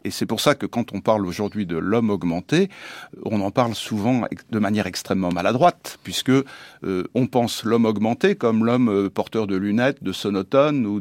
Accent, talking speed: French, 185 wpm